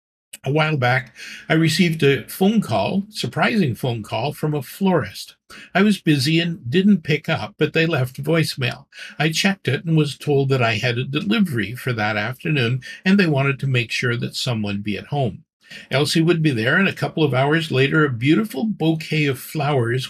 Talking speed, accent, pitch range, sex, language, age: 195 wpm, American, 125-165 Hz, male, English, 60-79